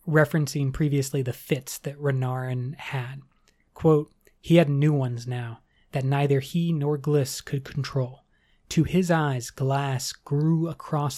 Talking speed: 140 wpm